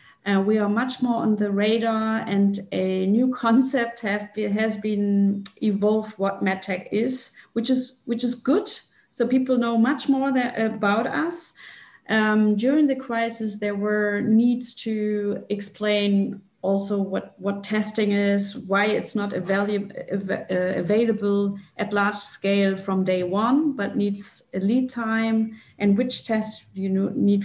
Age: 30-49